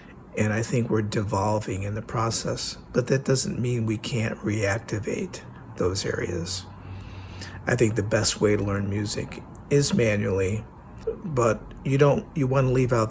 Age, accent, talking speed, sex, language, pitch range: 50-69, American, 160 wpm, male, English, 100-120 Hz